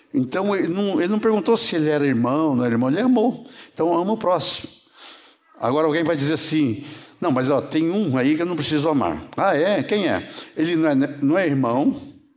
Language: Portuguese